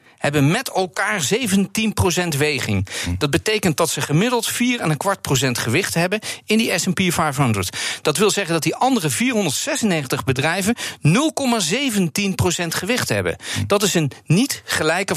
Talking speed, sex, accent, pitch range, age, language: 130 wpm, male, Dutch, 135-200 Hz, 50-69, Dutch